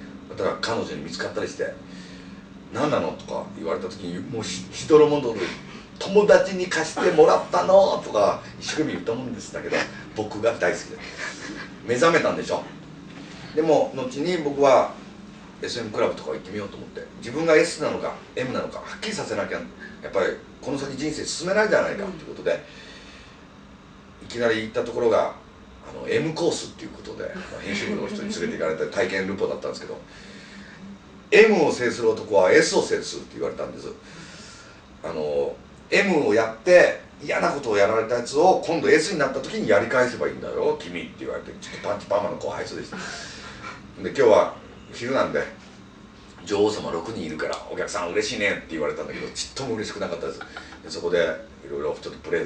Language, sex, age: Japanese, male, 40-59